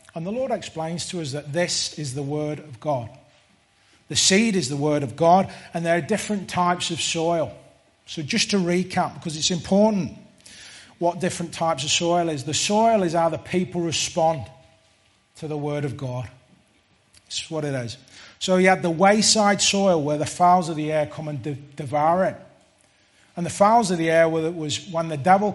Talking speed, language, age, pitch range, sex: 195 wpm, English, 30-49, 130-180 Hz, male